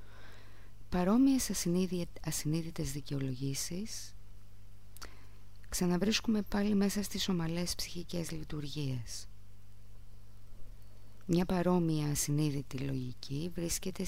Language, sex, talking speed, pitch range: Greek, female, 70 wpm, 100-165 Hz